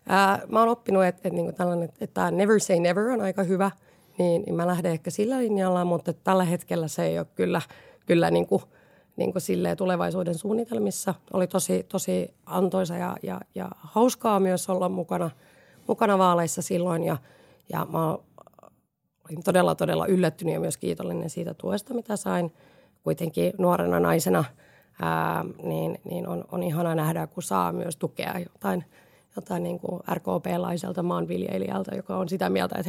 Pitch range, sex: 165-195 Hz, female